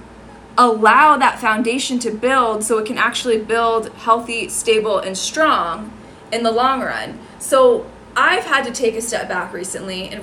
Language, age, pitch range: English, 20-39, 215-265 Hz